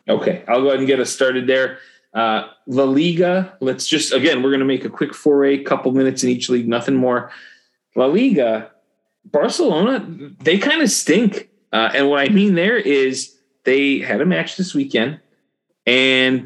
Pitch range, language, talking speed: 130-160 Hz, English, 185 wpm